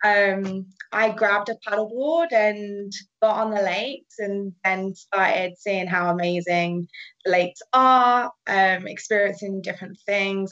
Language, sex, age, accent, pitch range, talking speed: English, female, 20-39, British, 190-245 Hz, 130 wpm